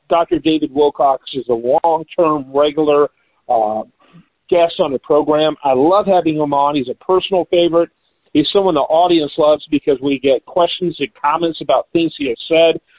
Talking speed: 170 wpm